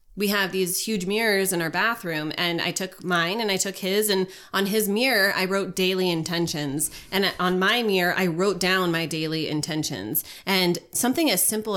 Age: 20-39